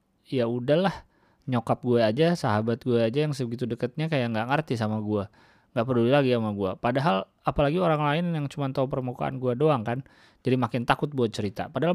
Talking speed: 190 wpm